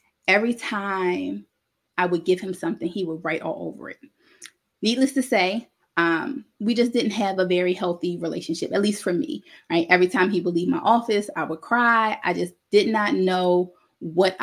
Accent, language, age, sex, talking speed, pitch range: American, English, 20-39, female, 190 wpm, 175-235 Hz